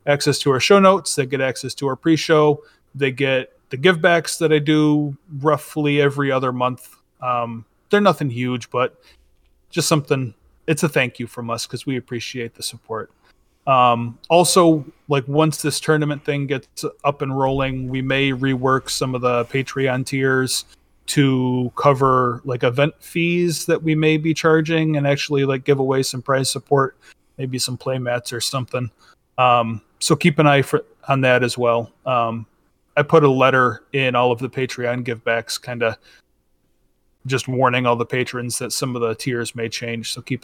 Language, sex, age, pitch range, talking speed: English, male, 30-49, 120-145 Hz, 180 wpm